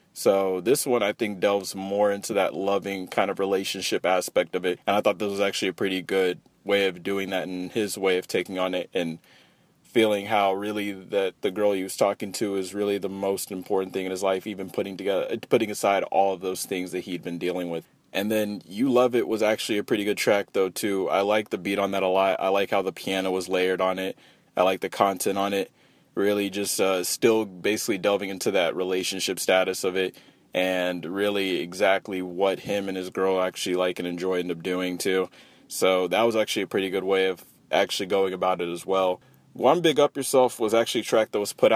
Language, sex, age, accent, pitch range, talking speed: English, male, 20-39, American, 95-105 Hz, 230 wpm